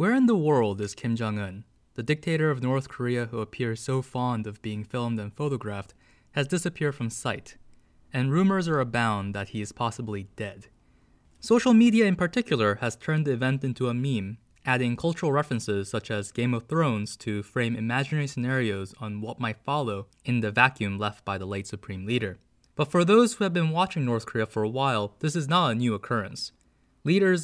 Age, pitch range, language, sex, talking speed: 20-39, 105-140 Hz, English, male, 195 wpm